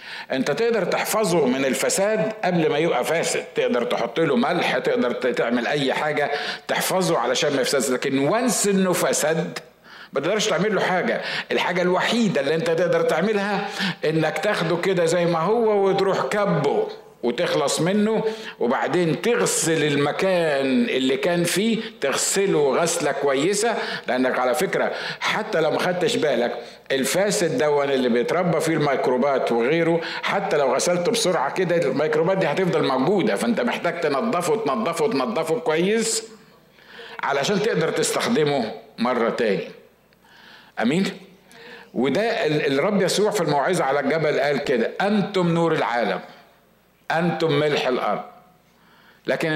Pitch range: 150-215 Hz